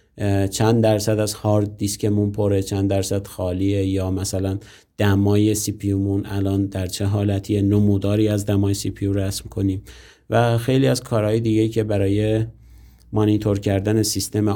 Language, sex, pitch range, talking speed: Persian, male, 100-110 Hz, 150 wpm